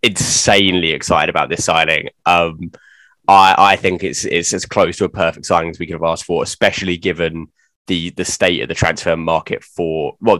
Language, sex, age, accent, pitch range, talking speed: English, male, 10-29, British, 85-100 Hz, 195 wpm